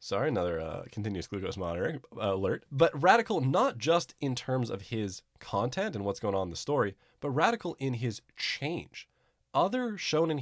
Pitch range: 100-140 Hz